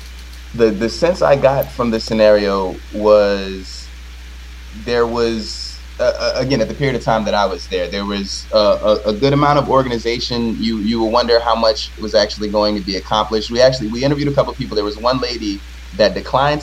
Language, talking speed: English, 205 wpm